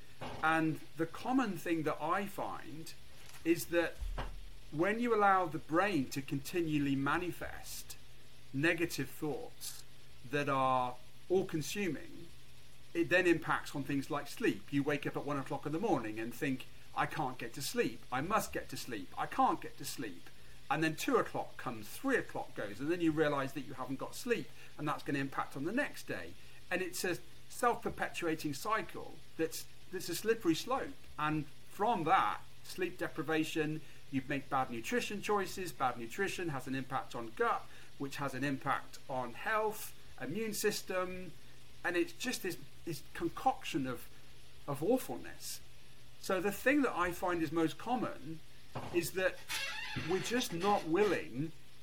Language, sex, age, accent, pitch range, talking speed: English, male, 40-59, British, 135-185 Hz, 165 wpm